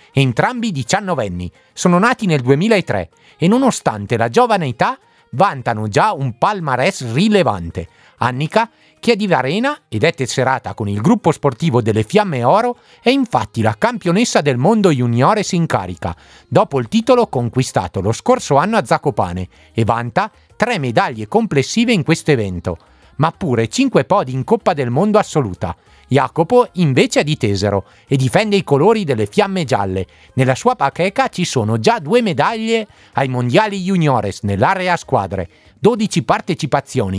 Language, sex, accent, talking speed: Italian, male, native, 150 wpm